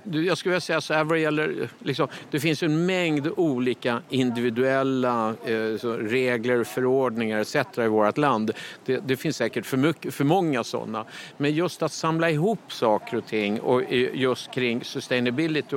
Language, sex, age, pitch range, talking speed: Swedish, male, 50-69, 115-155 Hz, 175 wpm